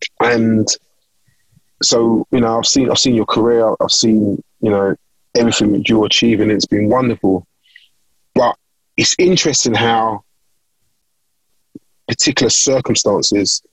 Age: 20-39